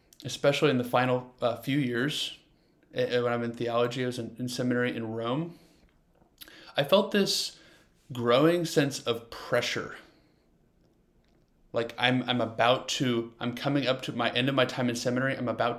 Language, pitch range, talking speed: English, 120-145 Hz, 165 wpm